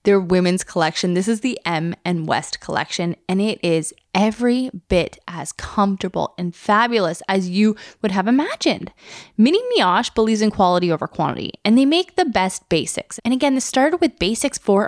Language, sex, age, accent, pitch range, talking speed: English, female, 10-29, American, 180-250 Hz, 180 wpm